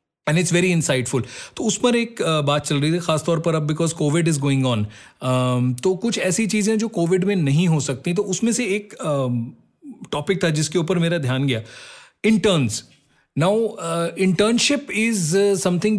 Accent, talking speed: native, 175 wpm